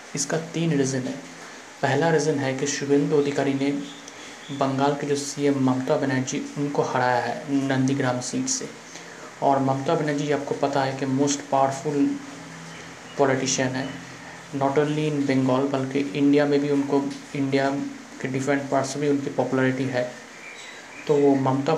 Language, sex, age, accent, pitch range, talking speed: Hindi, male, 30-49, native, 135-150 Hz, 150 wpm